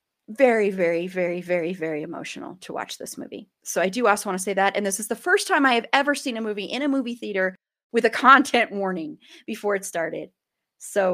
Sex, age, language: female, 30-49, English